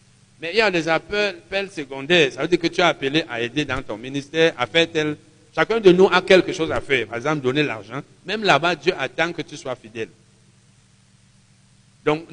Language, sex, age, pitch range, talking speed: French, male, 60-79, 125-160 Hz, 215 wpm